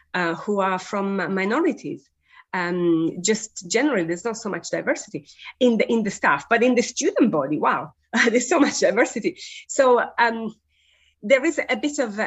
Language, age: English, 30-49